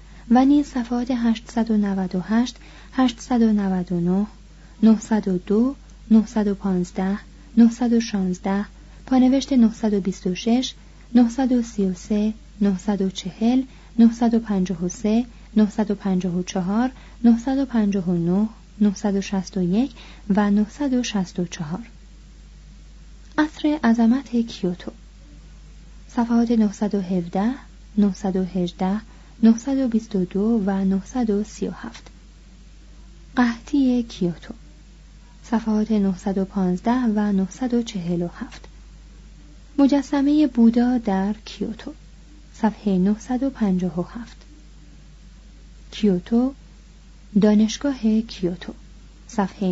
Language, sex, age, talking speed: Persian, female, 30-49, 55 wpm